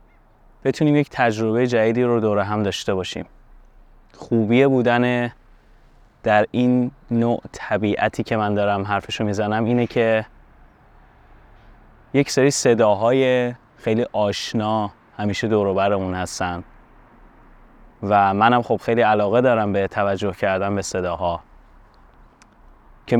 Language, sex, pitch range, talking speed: Persian, male, 100-120 Hz, 115 wpm